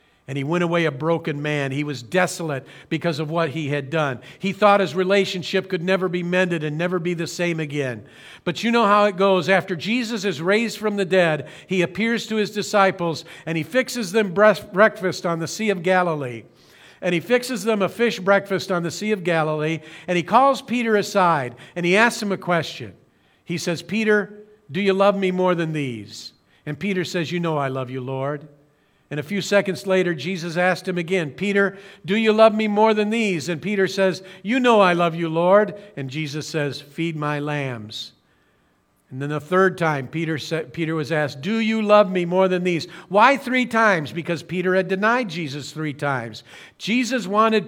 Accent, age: American, 50-69